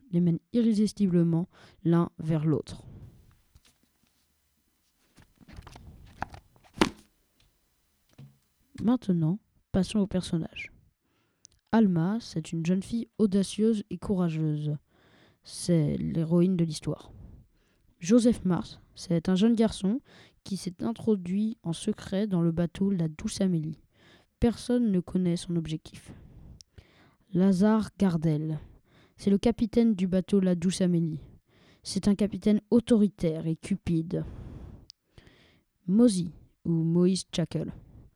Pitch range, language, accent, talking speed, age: 165-205 Hz, French, French, 100 wpm, 20-39